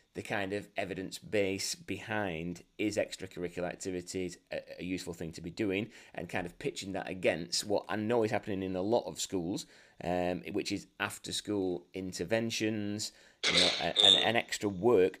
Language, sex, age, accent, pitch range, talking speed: English, male, 30-49, British, 95-115 Hz, 180 wpm